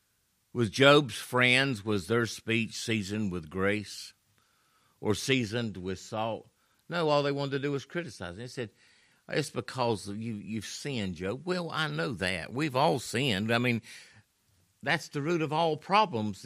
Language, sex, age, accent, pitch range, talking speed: English, male, 50-69, American, 110-170 Hz, 170 wpm